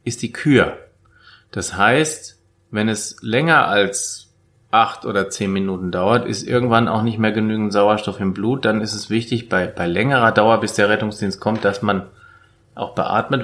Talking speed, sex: 175 wpm, male